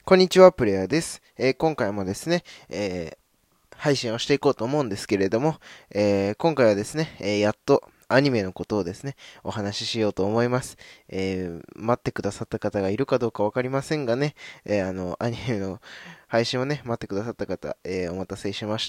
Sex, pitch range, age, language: male, 100-135 Hz, 20-39, Japanese